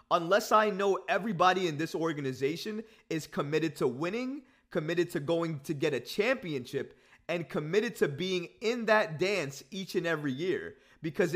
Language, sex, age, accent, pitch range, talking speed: English, male, 20-39, American, 150-195 Hz, 160 wpm